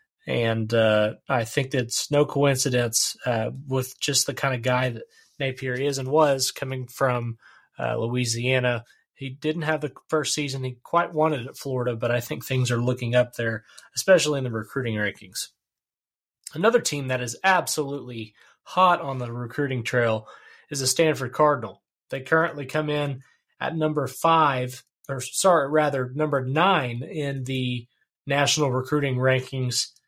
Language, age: English, 30-49